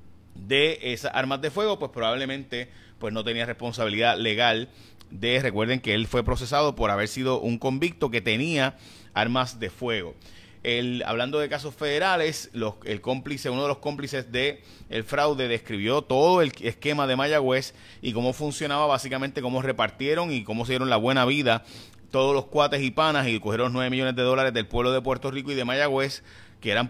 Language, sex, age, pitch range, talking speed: Spanish, male, 30-49, 115-135 Hz, 185 wpm